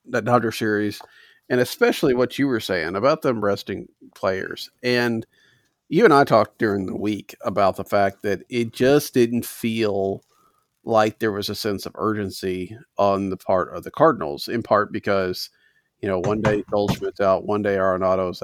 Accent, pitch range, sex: American, 100-120 Hz, male